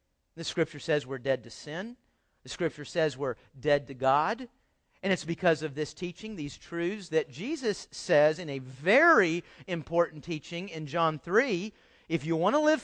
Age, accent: 40-59, American